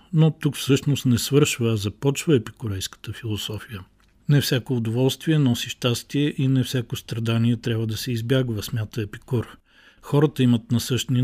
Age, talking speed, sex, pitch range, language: 50-69, 145 wpm, male, 110-135 Hz, Bulgarian